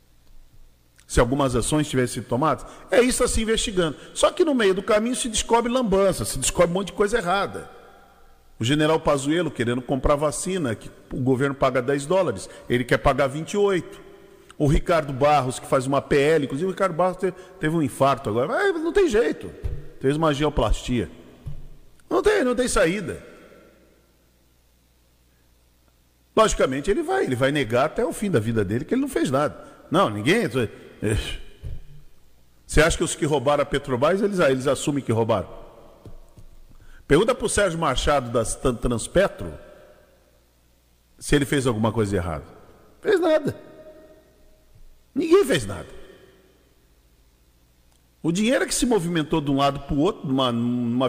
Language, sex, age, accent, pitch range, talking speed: Portuguese, male, 50-69, Brazilian, 115-190 Hz, 155 wpm